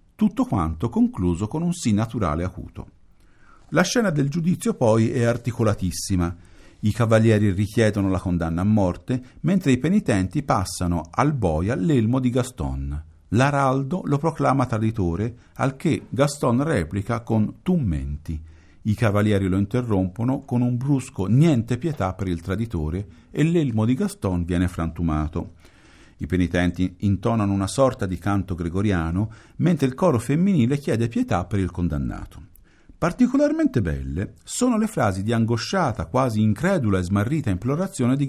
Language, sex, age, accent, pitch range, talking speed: Italian, male, 50-69, native, 95-135 Hz, 140 wpm